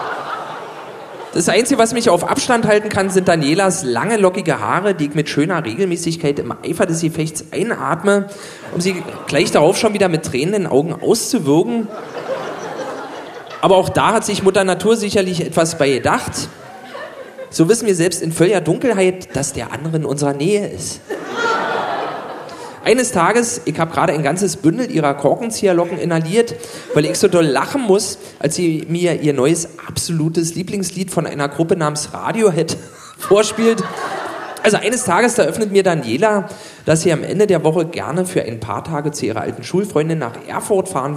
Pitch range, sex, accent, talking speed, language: 145-195 Hz, male, German, 165 wpm, German